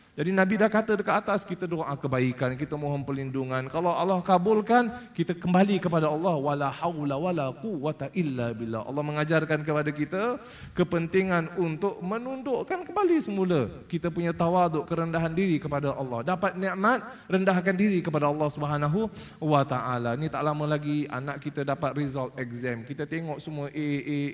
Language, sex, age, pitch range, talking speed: Malay, male, 20-39, 145-185 Hz, 155 wpm